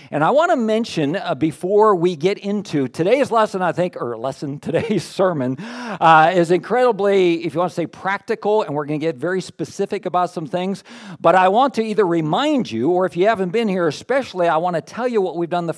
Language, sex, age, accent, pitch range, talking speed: English, male, 50-69, American, 170-215 Hz, 230 wpm